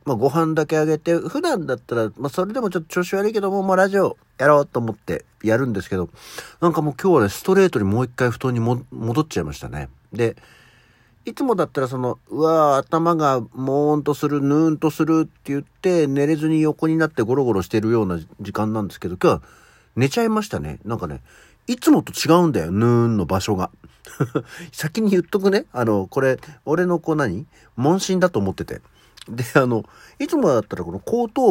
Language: Japanese